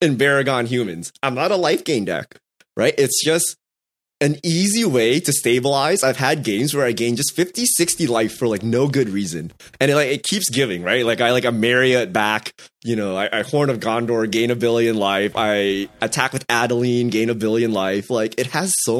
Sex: male